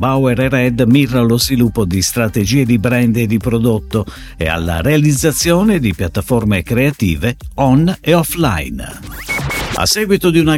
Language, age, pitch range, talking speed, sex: Italian, 50-69, 100-150 Hz, 150 wpm, male